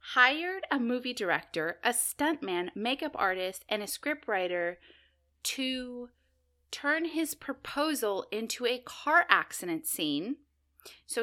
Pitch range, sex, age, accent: 195-280 Hz, female, 30-49, American